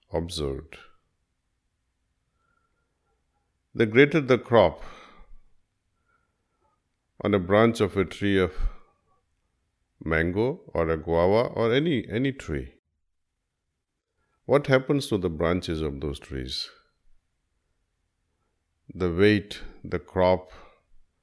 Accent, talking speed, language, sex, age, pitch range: native, 90 wpm, Hindi, male, 50-69, 80-105 Hz